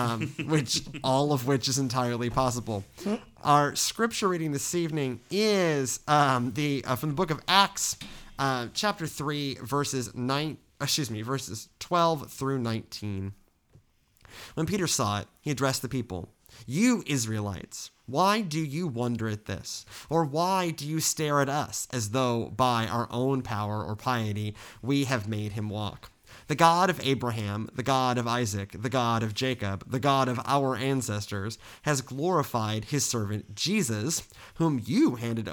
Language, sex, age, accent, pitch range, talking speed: English, male, 30-49, American, 115-150 Hz, 160 wpm